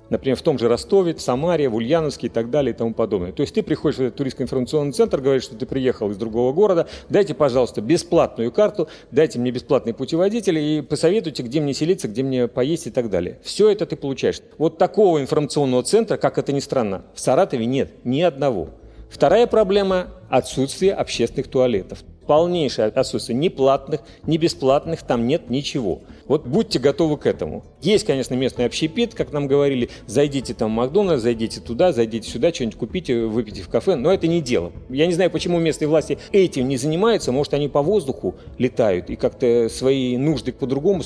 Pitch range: 125-175 Hz